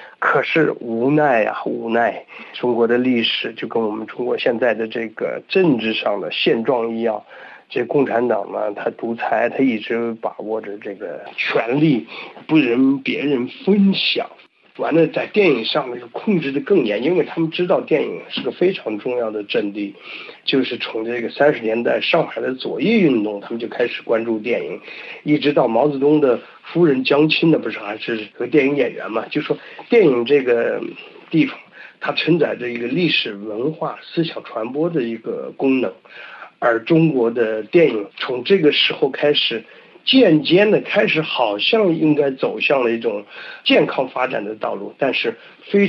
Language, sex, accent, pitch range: Chinese, male, native, 115-170 Hz